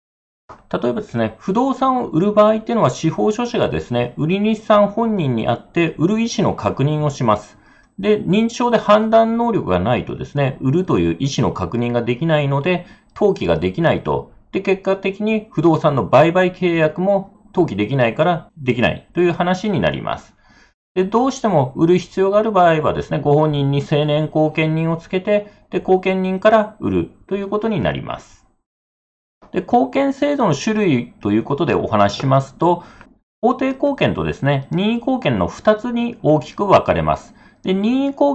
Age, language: 40-59, Japanese